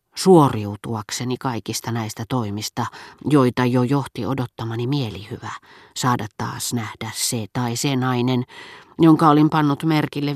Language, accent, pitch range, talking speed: Finnish, native, 115-140 Hz, 115 wpm